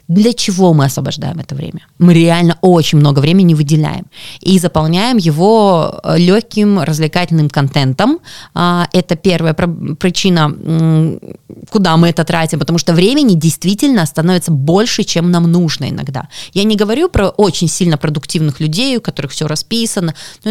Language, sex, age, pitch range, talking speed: Russian, female, 20-39, 155-195 Hz, 140 wpm